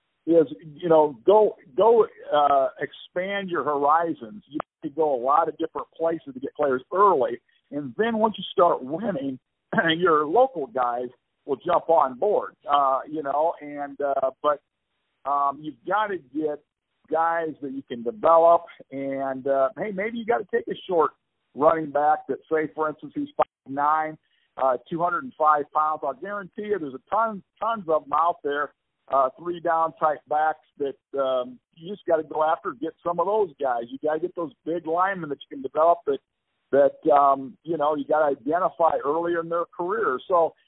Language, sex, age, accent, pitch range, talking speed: English, male, 50-69, American, 140-175 Hz, 190 wpm